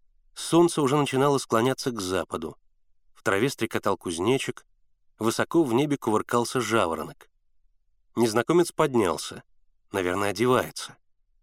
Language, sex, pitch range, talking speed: Russian, male, 100-130 Hz, 100 wpm